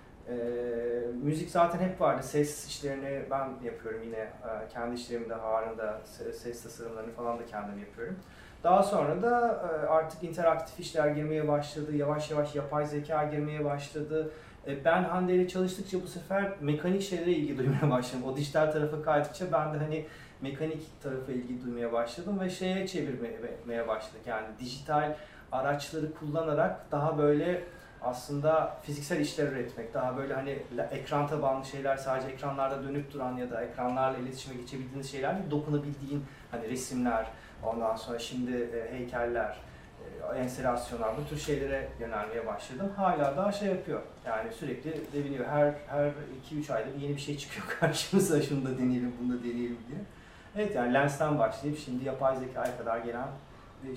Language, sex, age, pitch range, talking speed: Turkish, male, 30-49, 120-155 Hz, 150 wpm